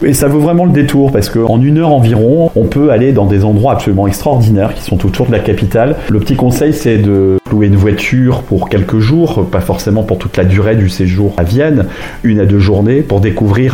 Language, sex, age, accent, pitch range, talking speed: French, male, 30-49, French, 95-120 Hz, 230 wpm